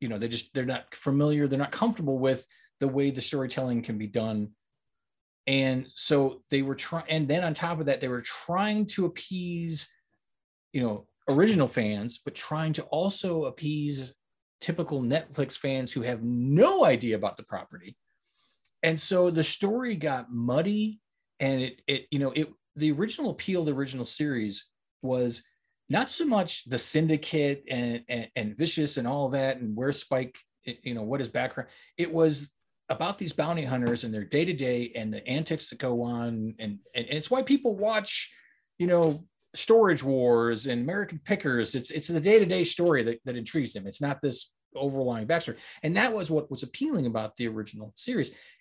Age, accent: 30-49, American